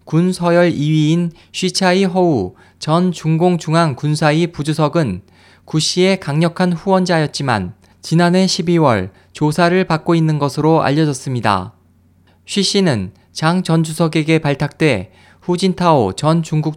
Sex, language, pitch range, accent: male, Korean, 125-170 Hz, native